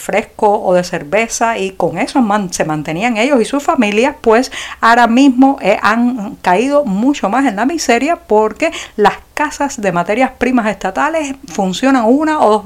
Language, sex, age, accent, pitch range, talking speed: Spanish, female, 50-69, American, 195-260 Hz, 160 wpm